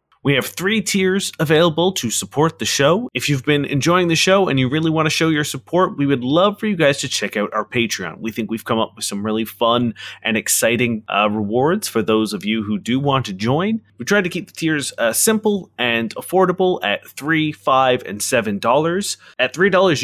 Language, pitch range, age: English, 110-155 Hz, 30-49